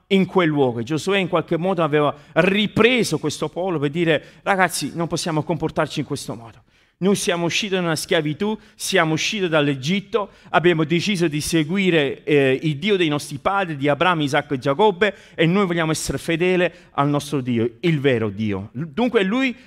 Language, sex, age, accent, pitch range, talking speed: Italian, male, 40-59, native, 140-190 Hz, 170 wpm